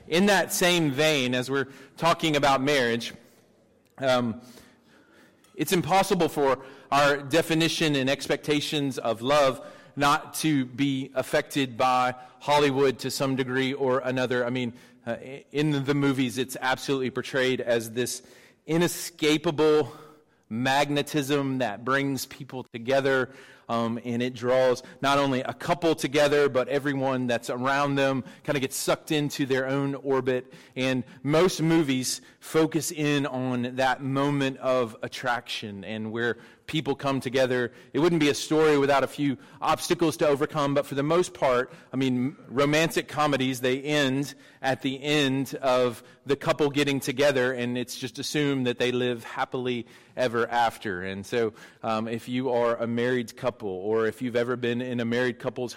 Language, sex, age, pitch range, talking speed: English, male, 30-49, 125-145 Hz, 155 wpm